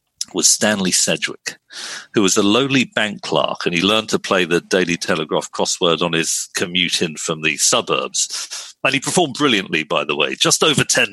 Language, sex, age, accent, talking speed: English, male, 40-59, British, 190 wpm